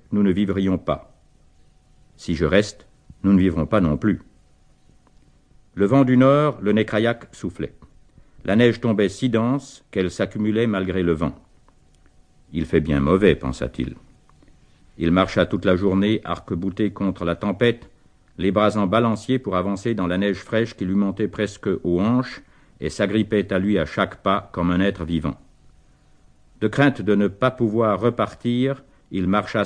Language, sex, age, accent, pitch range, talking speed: French, male, 60-79, French, 85-105 Hz, 165 wpm